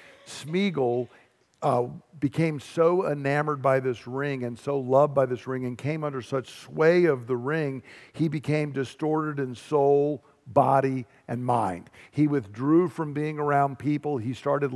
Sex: male